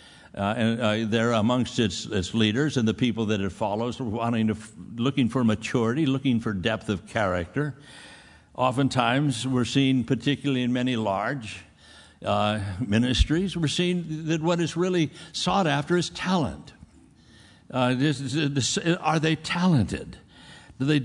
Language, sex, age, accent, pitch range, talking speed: English, male, 60-79, American, 105-145 Hz, 150 wpm